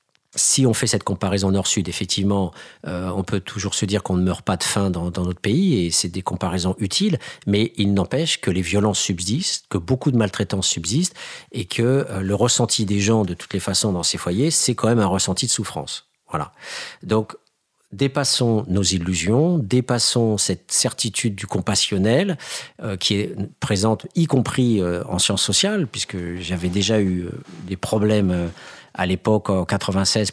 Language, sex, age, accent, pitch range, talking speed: French, male, 50-69, French, 95-120 Hz, 185 wpm